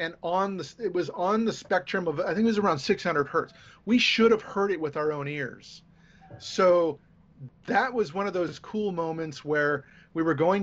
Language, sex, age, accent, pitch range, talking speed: English, male, 30-49, American, 145-185 Hz, 210 wpm